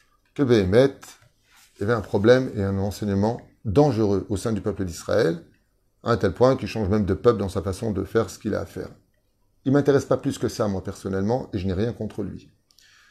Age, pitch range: 30-49, 100-120 Hz